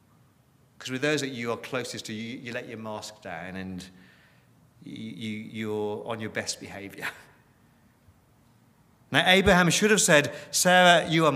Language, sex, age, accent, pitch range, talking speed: English, male, 30-49, British, 105-150 Hz, 150 wpm